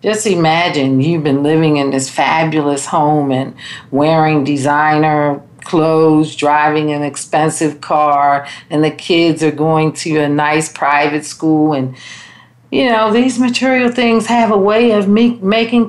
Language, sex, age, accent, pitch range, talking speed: English, female, 50-69, American, 145-180 Hz, 145 wpm